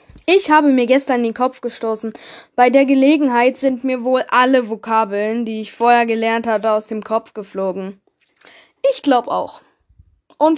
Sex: female